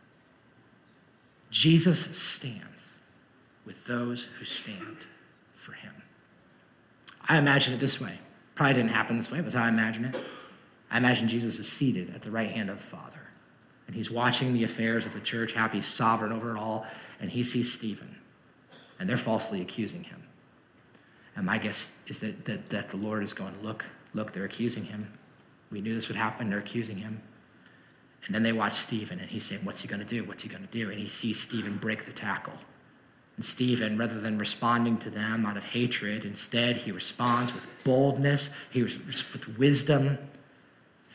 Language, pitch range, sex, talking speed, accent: English, 110-130 Hz, male, 180 wpm, American